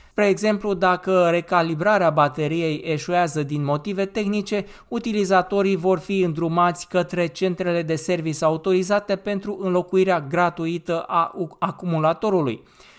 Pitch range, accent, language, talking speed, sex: 170-200 Hz, native, Romanian, 105 wpm, male